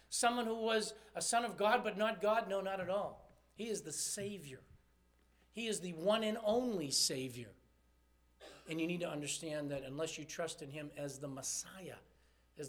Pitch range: 150-240 Hz